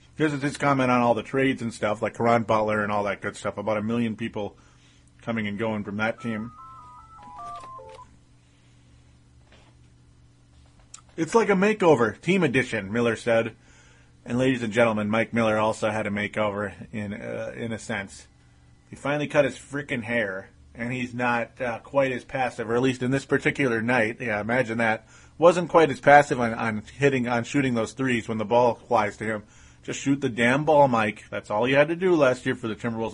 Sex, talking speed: male, 195 wpm